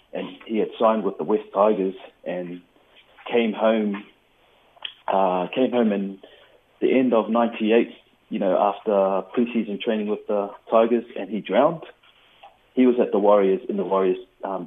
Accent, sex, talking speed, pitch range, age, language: British, male, 160 wpm, 95-115 Hz, 30-49, English